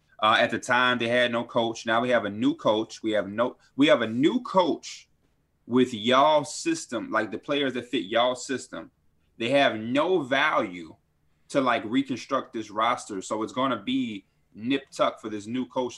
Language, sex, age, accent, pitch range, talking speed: English, male, 20-39, American, 110-140 Hz, 195 wpm